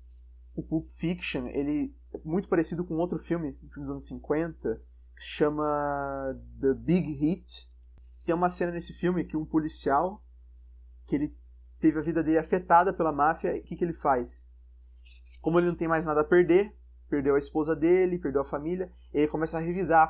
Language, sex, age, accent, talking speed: Portuguese, male, 20-39, Brazilian, 185 wpm